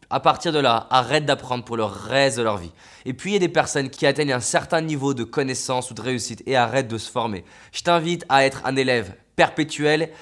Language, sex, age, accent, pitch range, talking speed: French, male, 20-39, French, 130-160 Hz, 240 wpm